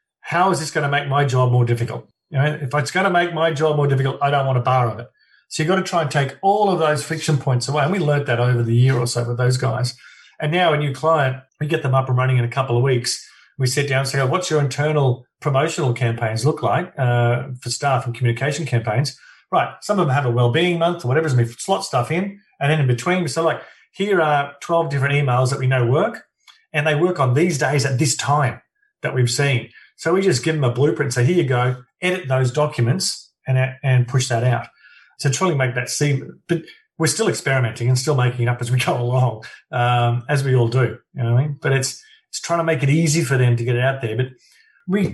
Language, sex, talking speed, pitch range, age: English, male, 255 wpm, 125-160 Hz, 40-59